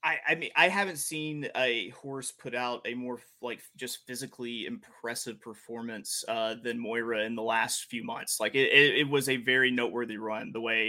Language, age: English, 30-49